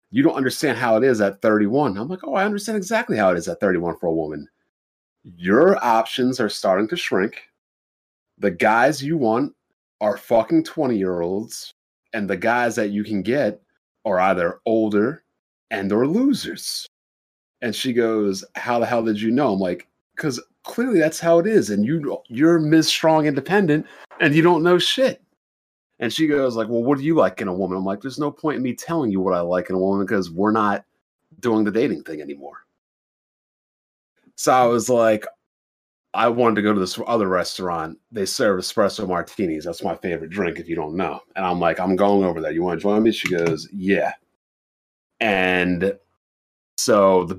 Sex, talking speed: male, 195 wpm